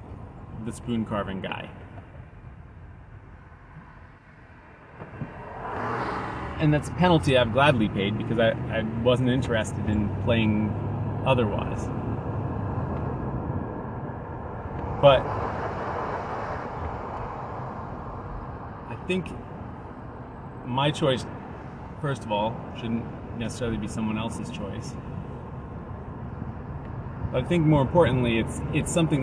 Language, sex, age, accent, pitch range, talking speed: English, male, 30-49, American, 110-125 Hz, 80 wpm